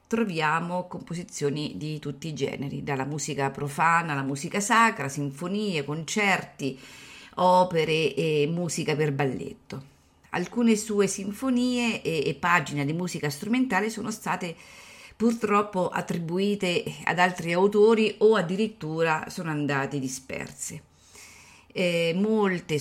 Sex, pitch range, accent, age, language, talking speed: female, 150-205 Hz, native, 40-59, Italian, 110 wpm